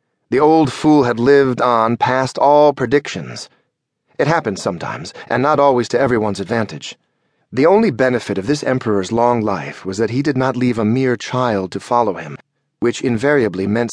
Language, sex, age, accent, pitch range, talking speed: English, male, 30-49, American, 105-135 Hz, 175 wpm